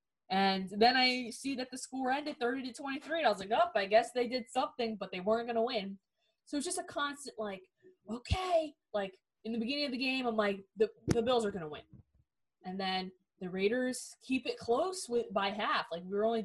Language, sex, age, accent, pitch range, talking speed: English, female, 20-39, American, 195-260 Hz, 235 wpm